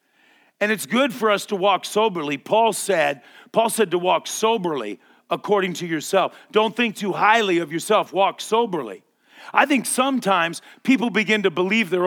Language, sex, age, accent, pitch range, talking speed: English, male, 40-59, American, 185-225 Hz, 170 wpm